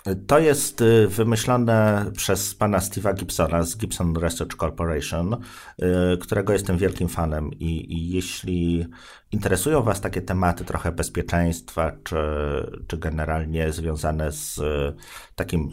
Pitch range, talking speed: 80-95 Hz, 115 wpm